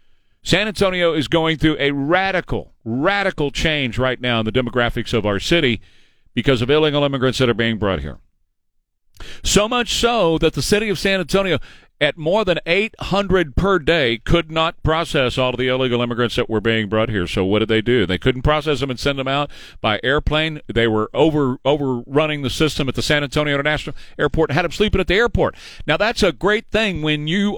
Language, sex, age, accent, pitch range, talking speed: English, male, 50-69, American, 125-175 Hz, 205 wpm